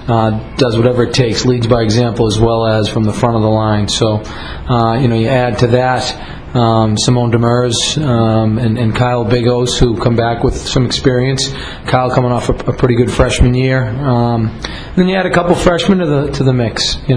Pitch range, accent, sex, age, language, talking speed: 115-135 Hz, American, male, 40-59, English, 215 wpm